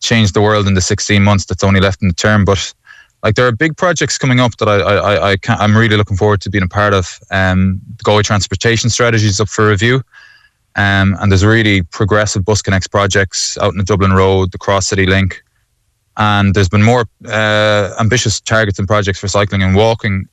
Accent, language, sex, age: Irish, English, male, 20-39